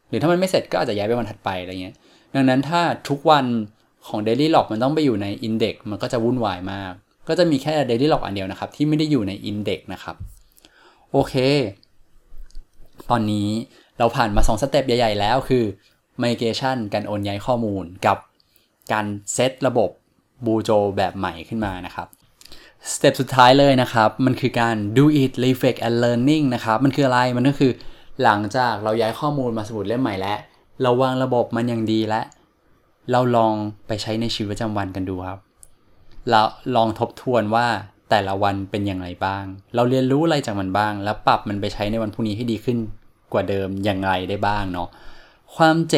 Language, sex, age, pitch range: Thai, male, 20-39, 105-130 Hz